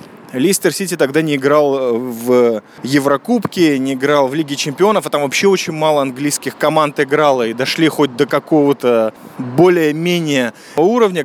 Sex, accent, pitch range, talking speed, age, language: male, native, 135-185 Hz, 145 wpm, 20-39, Russian